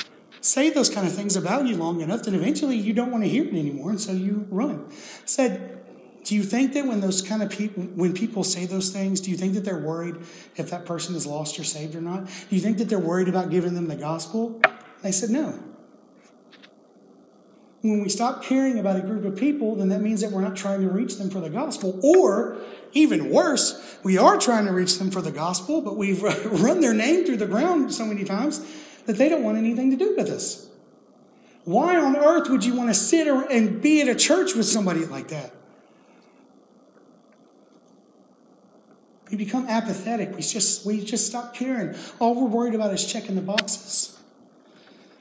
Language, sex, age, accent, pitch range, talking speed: English, male, 30-49, American, 185-245 Hz, 205 wpm